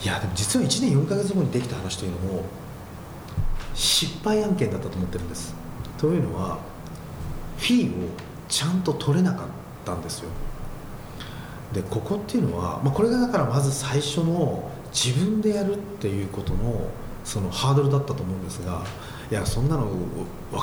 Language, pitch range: Japanese, 100-170 Hz